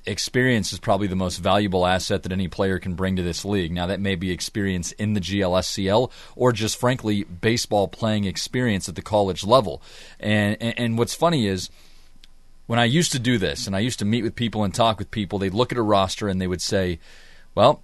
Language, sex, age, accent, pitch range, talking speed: English, male, 30-49, American, 95-120 Hz, 220 wpm